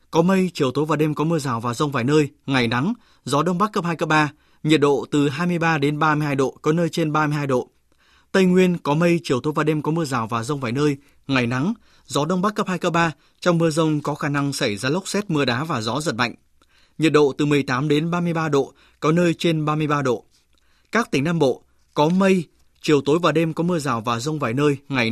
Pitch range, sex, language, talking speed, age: 140-170 Hz, male, Vietnamese, 250 wpm, 20-39